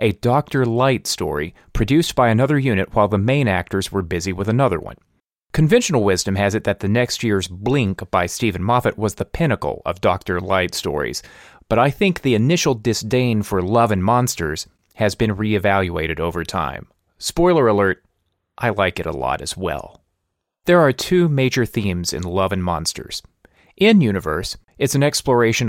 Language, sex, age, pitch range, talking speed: English, male, 30-49, 95-120 Hz, 170 wpm